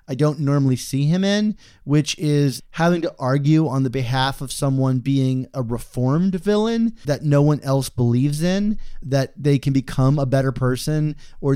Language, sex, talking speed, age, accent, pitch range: English, male, 175 wpm, 30-49, American, 125-150 Hz